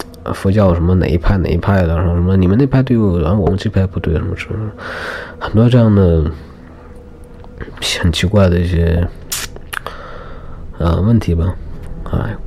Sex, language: male, Chinese